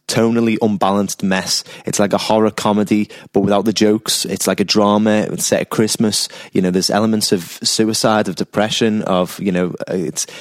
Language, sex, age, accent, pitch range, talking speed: English, male, 20-39, British, 100-120 Hz, 180 wpm